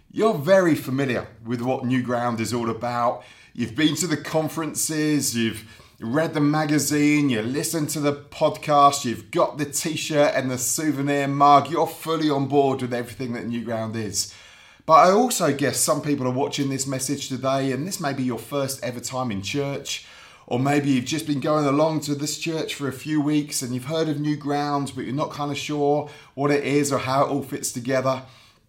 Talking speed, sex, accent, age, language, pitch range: 205 wpm, male, British, 30-49, English, 120-150 Hz